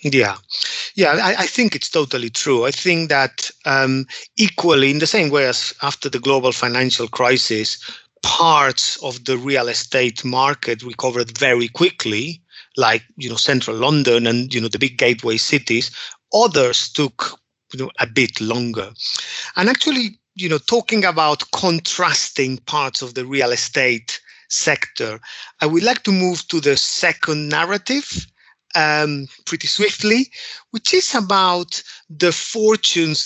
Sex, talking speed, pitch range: male, 145 wpm, 135-210 Hz